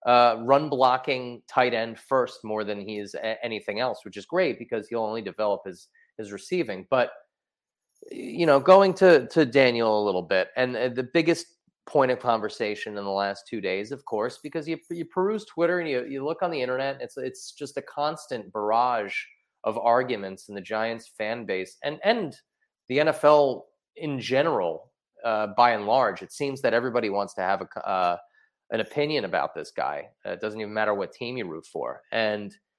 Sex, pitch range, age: male, 110-160 Hz, 30-49